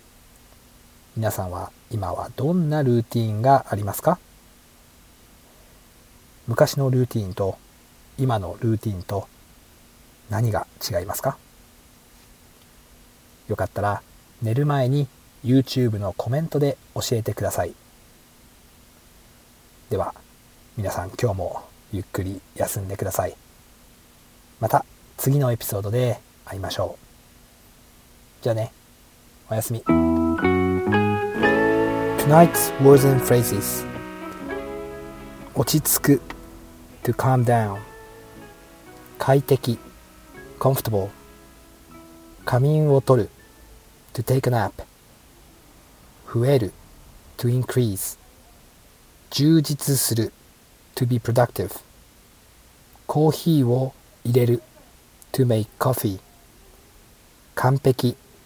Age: 40-59